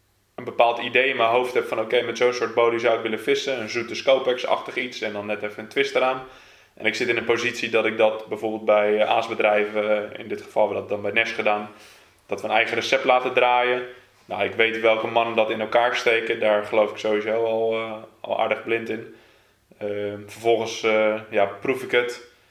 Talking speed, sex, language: 220 wpm, male, Dutch